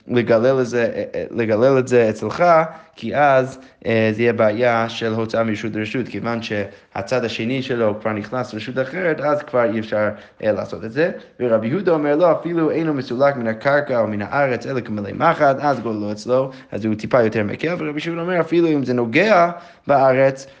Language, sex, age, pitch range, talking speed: Hebrew, male, 20-39, 110-145 Hz, 190 wpm